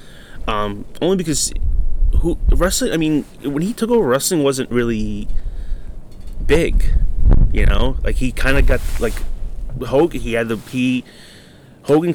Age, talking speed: 30-49, 145 wpm